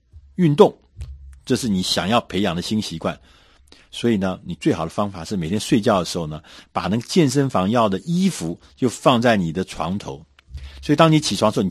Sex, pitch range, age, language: male, 80-110 Hz, 50-69, Chinese